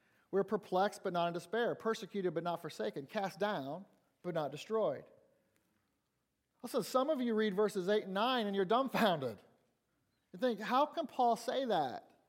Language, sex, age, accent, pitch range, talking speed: English, male, 40-59, American, 175-220 Hz, 165 wpm